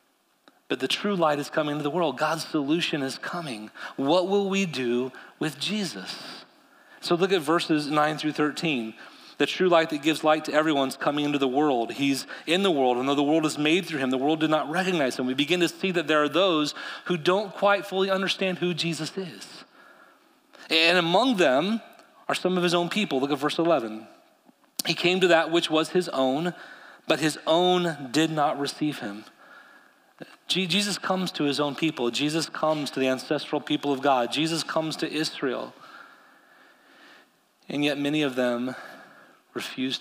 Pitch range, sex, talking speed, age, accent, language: 130-175 Hz, male, 185 wpm, 30-49, American, English